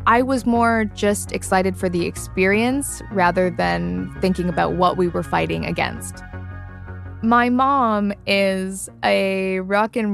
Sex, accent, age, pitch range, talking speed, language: female, American, 20-39, 180-235 Hz, 135 wpm, English